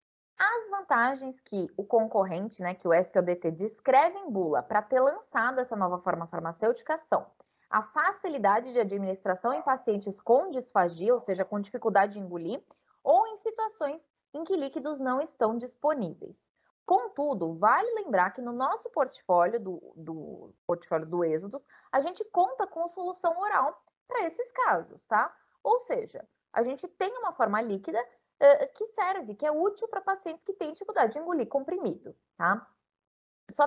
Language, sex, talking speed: English, female, 155 wpm